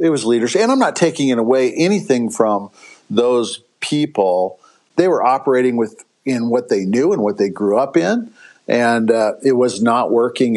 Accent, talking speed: American, 185 wpm